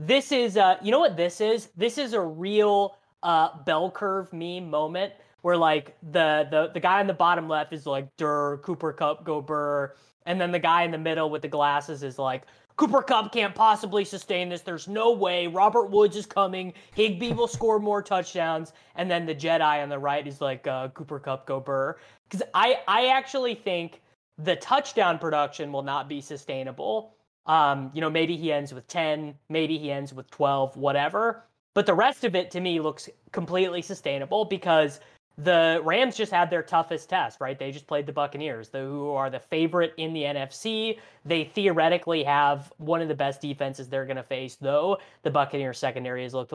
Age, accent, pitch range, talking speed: 20-39, American, 145-190 Hz, 200 wpm